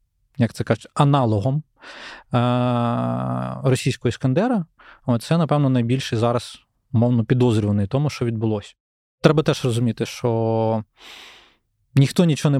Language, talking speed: Ukrainian, 105 wpm